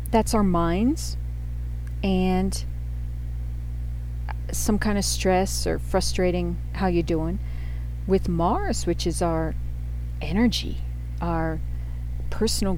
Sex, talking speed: female, 100 wpm